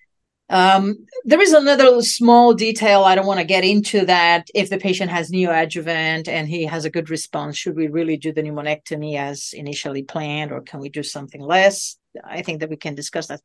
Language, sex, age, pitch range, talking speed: English, female, 40-59, 160-220 Hz, 205 wpm